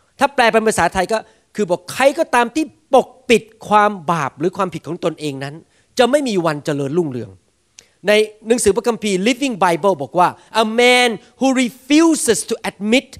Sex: male